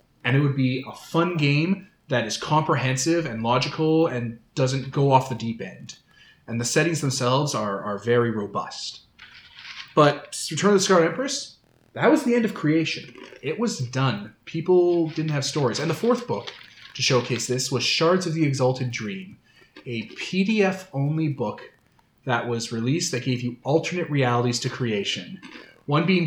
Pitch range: 120-155 Hz